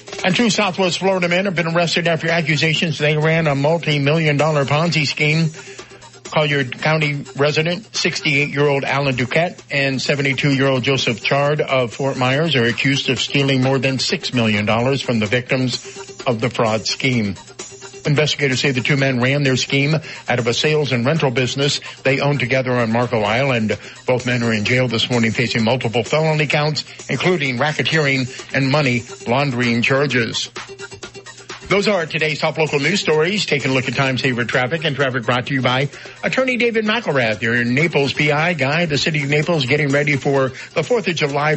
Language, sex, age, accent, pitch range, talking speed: English, male, 50-69, American, 125-150 Hz, 175 wpm